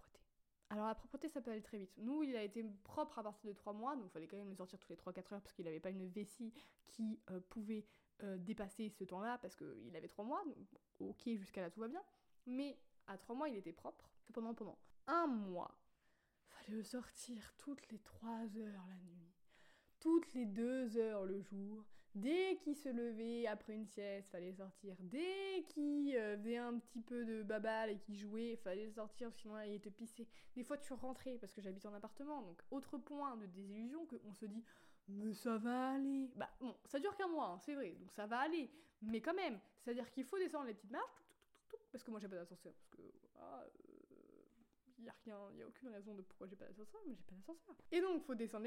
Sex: female